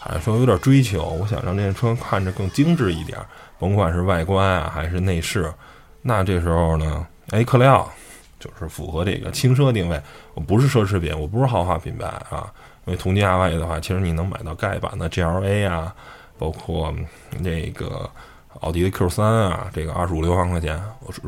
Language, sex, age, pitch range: Chinese, male, 20-39, 85-105 Hz